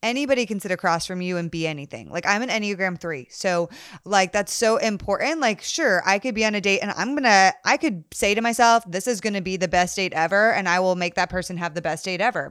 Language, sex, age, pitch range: English, female, 20-39, 185-230 Hz